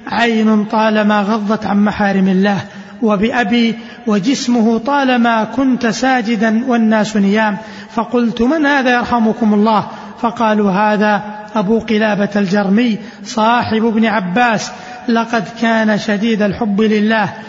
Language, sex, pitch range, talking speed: Arabic, male, 210-235 Hz, 105 wpm